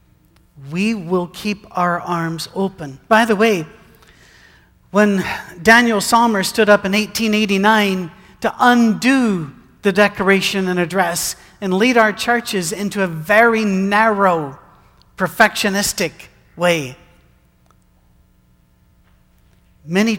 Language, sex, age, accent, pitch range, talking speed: English, male, 40-59, American, 165-215 Hz, 100 wpm